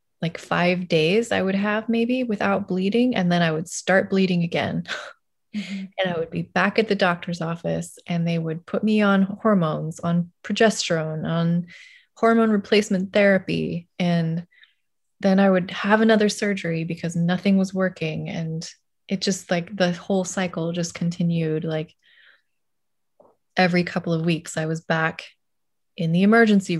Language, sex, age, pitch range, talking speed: English, female, 20-39, 165-190 Hz, 155 wpm